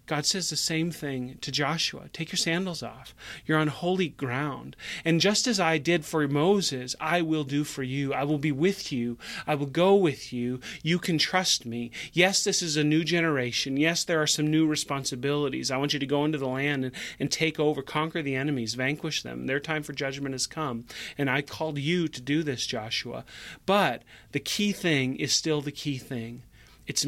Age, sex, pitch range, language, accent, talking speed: 30-49, male, 130-160 Hz, English, American, 210 wpm